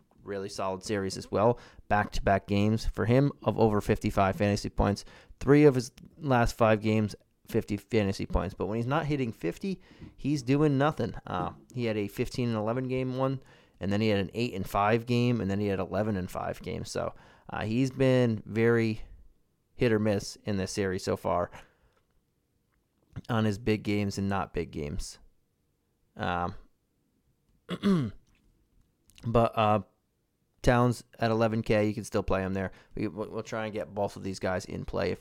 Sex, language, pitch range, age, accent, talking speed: male, English, 95-115 Hz, 30-49, American, 180 wpm